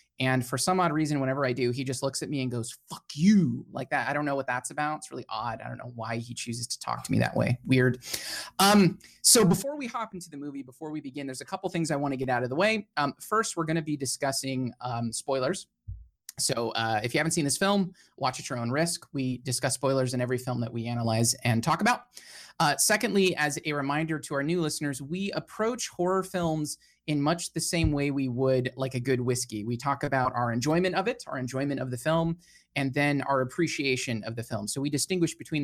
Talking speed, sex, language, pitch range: 245 wpm, male, English, 125-160 Hz